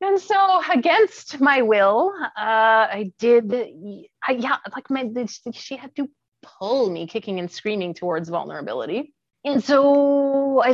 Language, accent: English, American